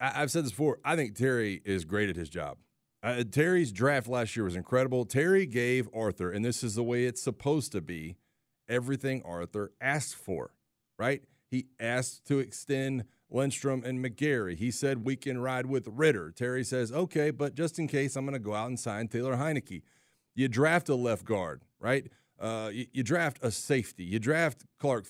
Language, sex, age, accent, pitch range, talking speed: English, male, 40-59, American, 110-140 Hz, 195 wpm